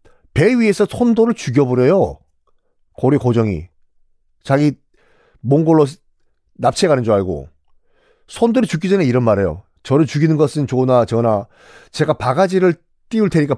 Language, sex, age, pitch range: Korean, male, 40-59, 125-195 Hz